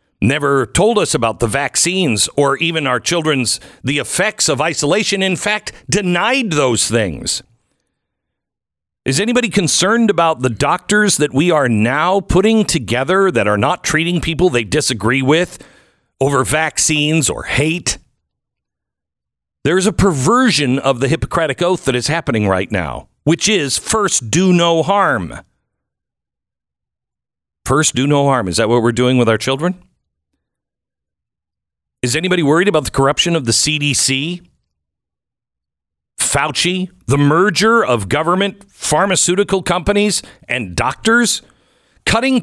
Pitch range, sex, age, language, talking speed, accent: 120-190 Hz, male, 50-69, English, 130 wpm, American